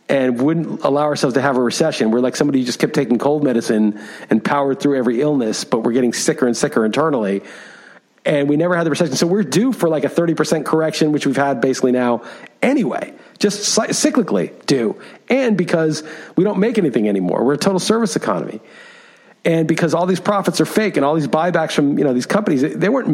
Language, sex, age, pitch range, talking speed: English, male, 40-59, 145-205 Hz, 215 wpm